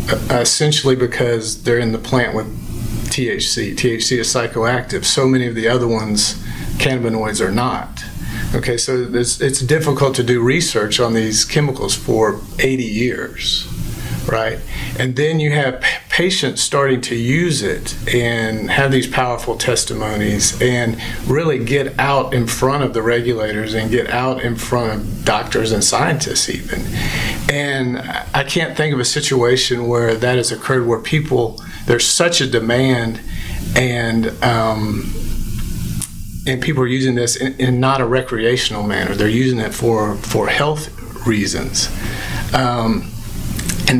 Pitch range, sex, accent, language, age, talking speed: 115-130 Hz, male, American, English, 50-69, 145 wpm